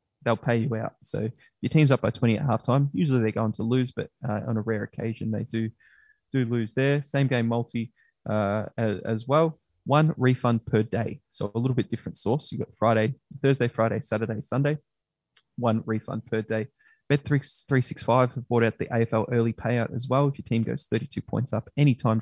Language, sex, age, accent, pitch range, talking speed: English, male, 20-39, Australian, 110-135 Hz, 195 wpm